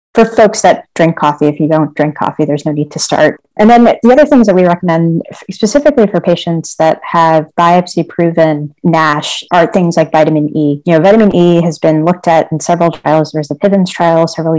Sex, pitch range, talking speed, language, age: female, 150-175 Hz, 215 wpm, English, 30-49